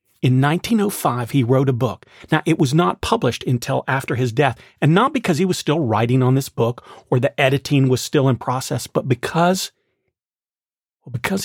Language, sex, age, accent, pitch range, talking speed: English, male, 40-59, American, 125-165 Hz, 200 wpm